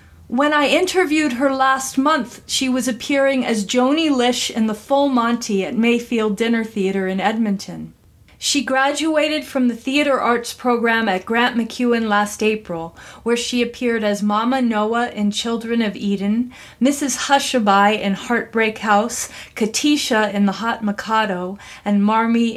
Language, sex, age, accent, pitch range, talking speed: English, female, 40-59, American, 210-265 Hz, 150 wpm